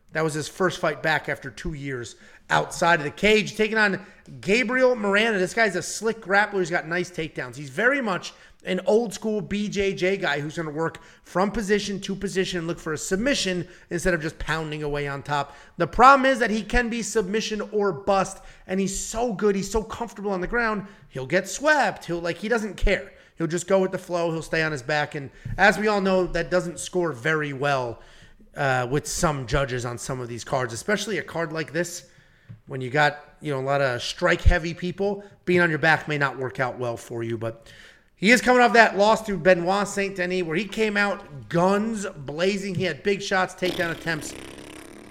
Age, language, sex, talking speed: 30-49, English, male, 215 wpm